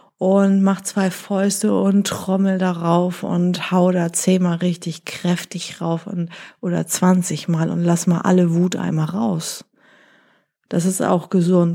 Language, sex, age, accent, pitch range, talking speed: German, female, 30-49, German, 175-215 Hz, 145 wpm